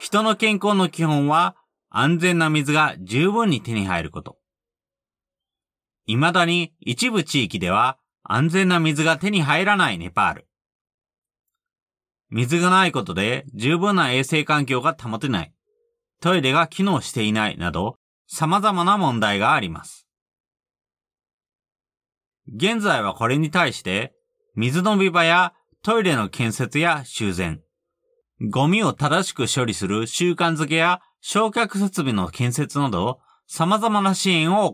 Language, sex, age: Japanese, male, 30-49